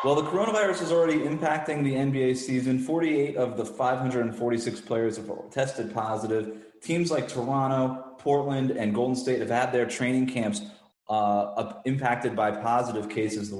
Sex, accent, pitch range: male, American, 110-135 Hz